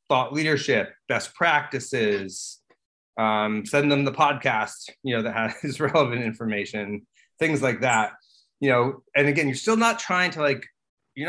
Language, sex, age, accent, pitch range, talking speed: English, male, 30-49, American, 120-155 Hz, 155 wpm